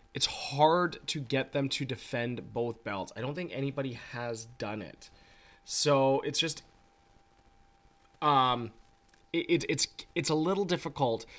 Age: 20-39